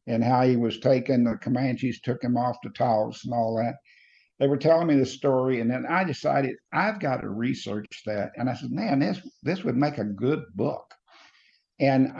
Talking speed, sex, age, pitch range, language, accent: 205 wpm, male, 60-79, 120-140 Hz, English, American